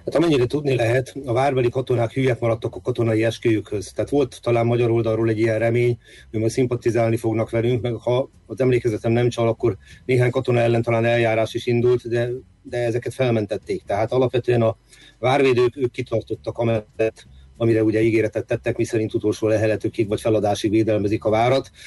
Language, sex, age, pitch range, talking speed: Hungarian, male, 30-49, 110-120 Hz, 170 wpm